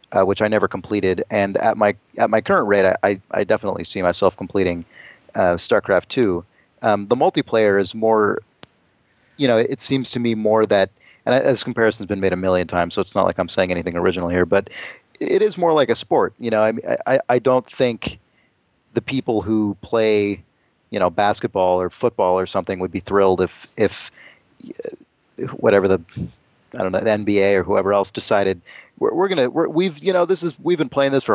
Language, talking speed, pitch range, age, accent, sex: English, 205 wpm, 95-125 Hz, 30-49, American, male